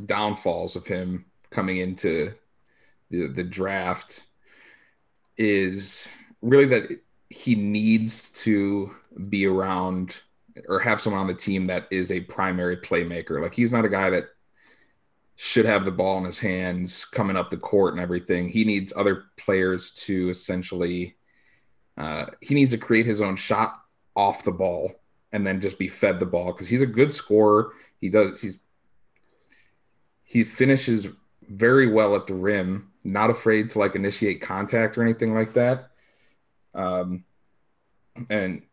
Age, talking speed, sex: 30-49, 150 wpm, male